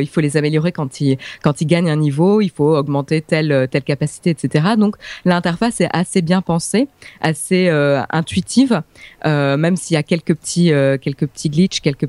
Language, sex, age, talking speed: French, female, 20-39, 200 wpm